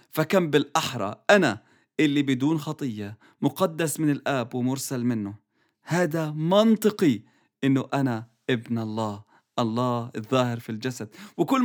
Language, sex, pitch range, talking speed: English, male, 115-155 Hz, 115 wpm